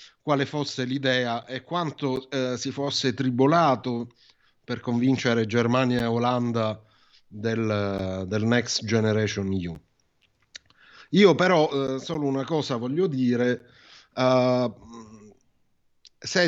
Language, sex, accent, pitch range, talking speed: Italian, male, native, 115-140 Hz, 105 wpm